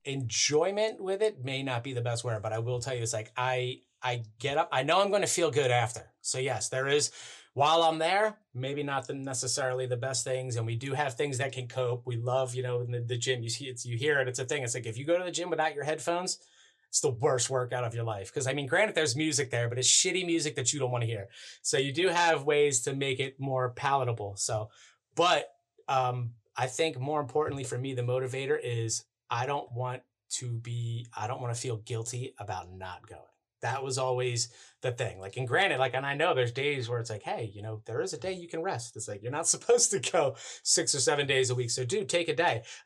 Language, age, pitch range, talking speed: English, 30-49, 115-140 Hz, 260 wpm